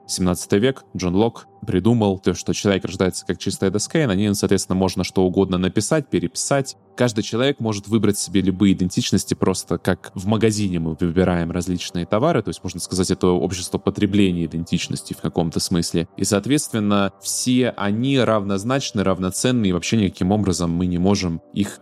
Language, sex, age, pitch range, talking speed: Russian, male, 20-39, 90-110 Hz, 170 wpm